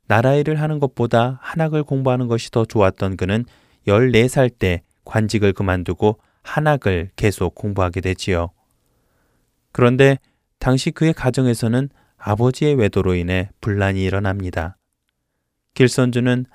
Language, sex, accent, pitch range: Korean, male, native, 95-130 Hz